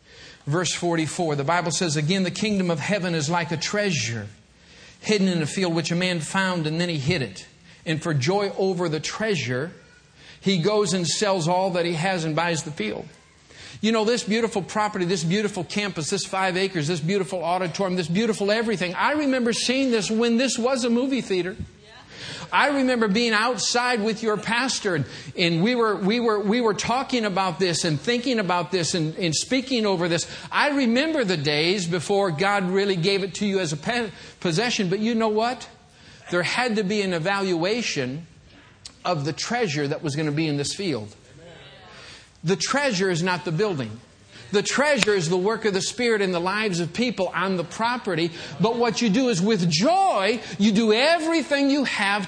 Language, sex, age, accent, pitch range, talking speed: English, male, 50-69, American, 160-215 Hz, 195 wpm